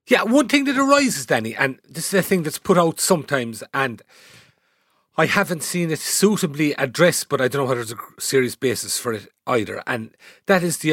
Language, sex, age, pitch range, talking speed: English, male, 40-59, 125-170 Hz, 210 wpm